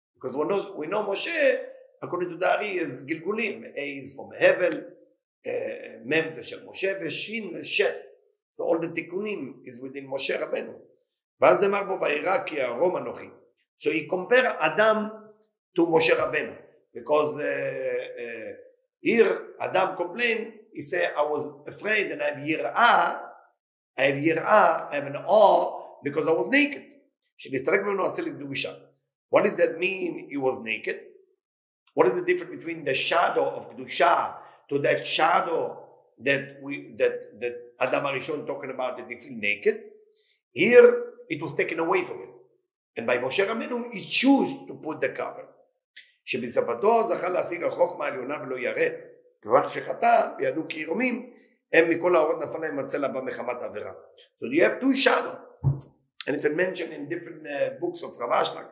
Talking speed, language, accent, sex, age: 130 wpm, English, Italian, male, 50-69